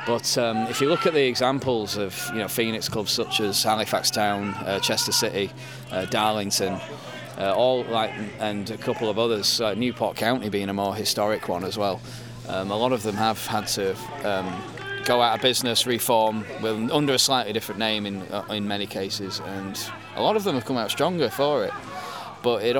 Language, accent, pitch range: English, British, 105-125 Hz